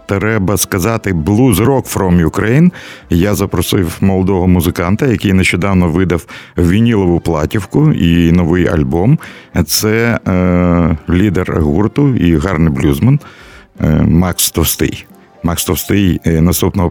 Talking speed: 105 wpm